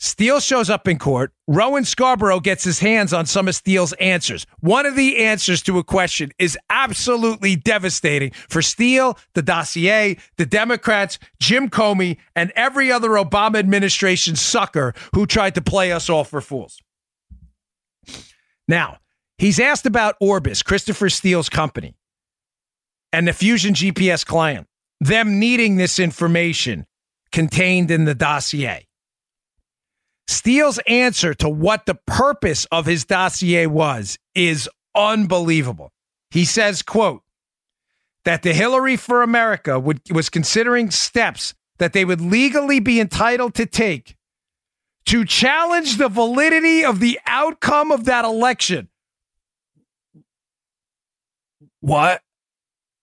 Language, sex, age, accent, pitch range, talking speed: English, male, 40-59, American, 165-230 Hz, 125 wpm